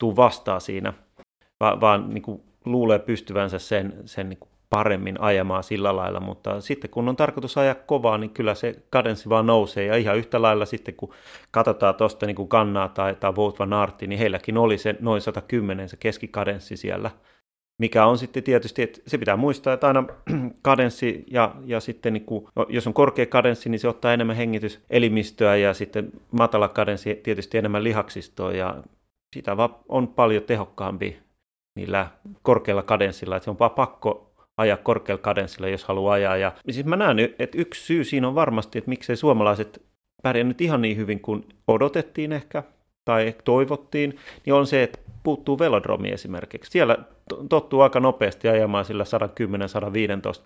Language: Finnish